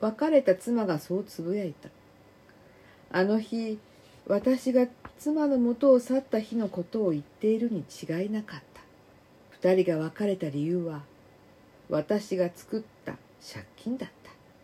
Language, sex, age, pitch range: Japanese, female, 50-69, 165-245 Hz